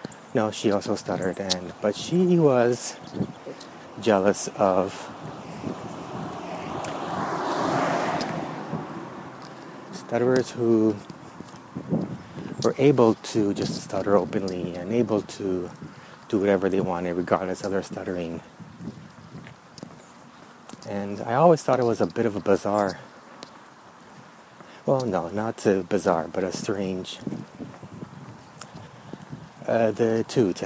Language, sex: English, male